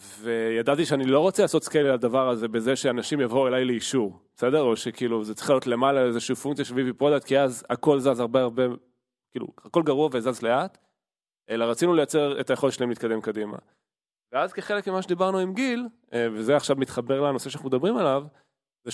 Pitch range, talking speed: 115-145 Hz, 185 wpm